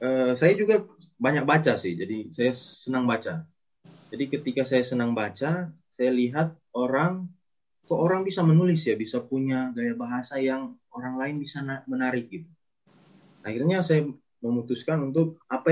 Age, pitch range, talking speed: 20-39, 115-160 Hz, 140 wpm